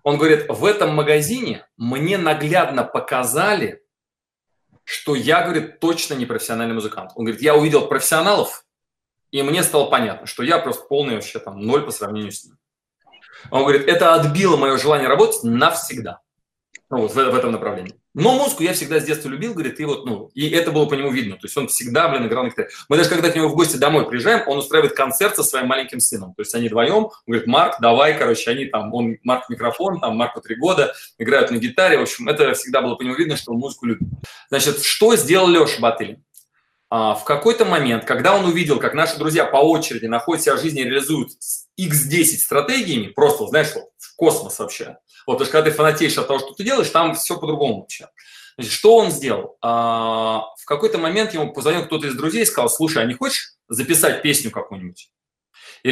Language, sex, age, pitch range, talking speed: Russian, male, 20-39, 130-175 Hz, 200 wpm